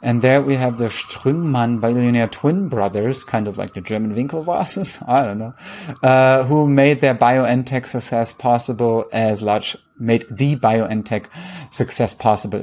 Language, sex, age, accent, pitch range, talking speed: English, male, 30-49, German, 105-125 Hz, 150 wpm